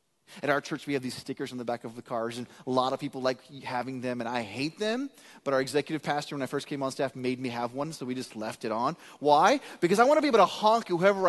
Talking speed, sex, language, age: 290 wpm, male, English, 30-49